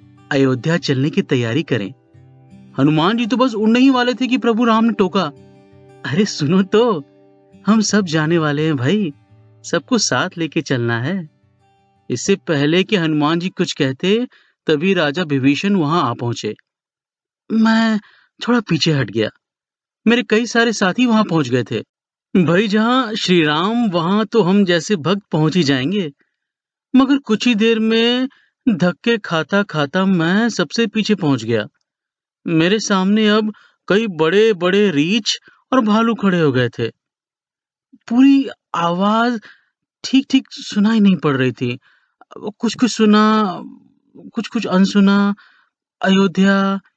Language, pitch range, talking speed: Hindi, 160-230 Hz, 140 wpm